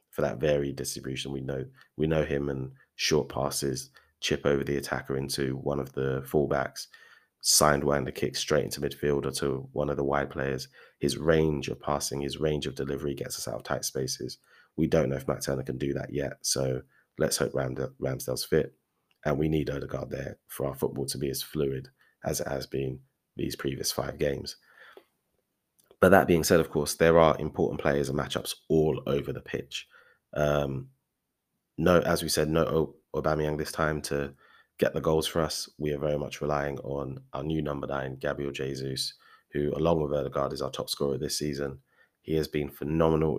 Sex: male